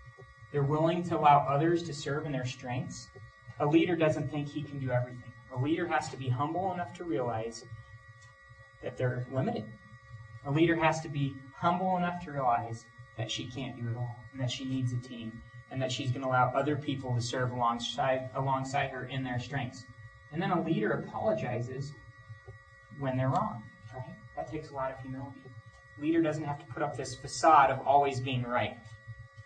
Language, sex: English, male